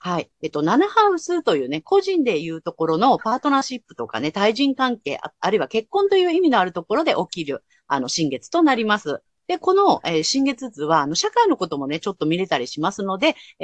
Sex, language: female, Japanese